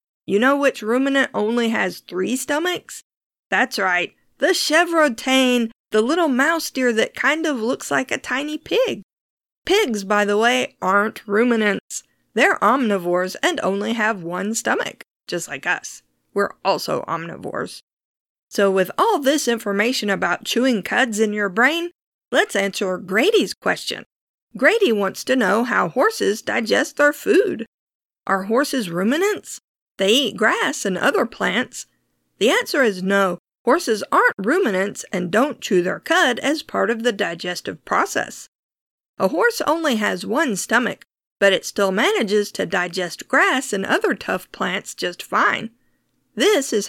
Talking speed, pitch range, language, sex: 145 wpm, 200-285 Hz, English, female